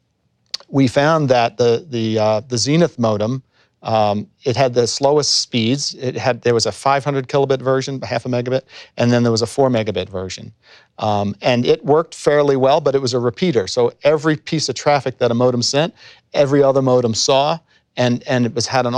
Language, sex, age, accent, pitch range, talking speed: English, male, 40-59, American, 115-135 Hz, 200 wpm